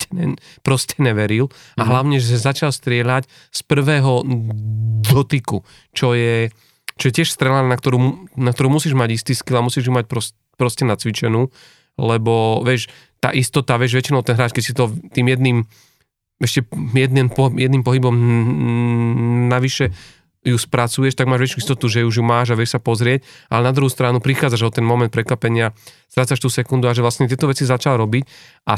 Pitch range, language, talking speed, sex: 120-135 Hz, Slovak, 175 wpm, male